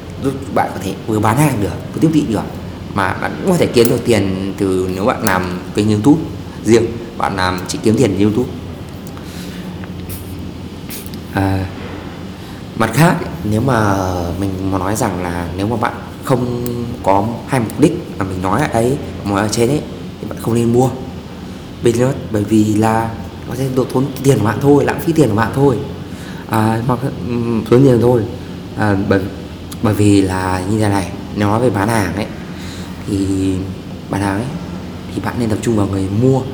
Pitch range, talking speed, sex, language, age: 95-115 Hz, 185 wpm, male, Vietnamese, 20-39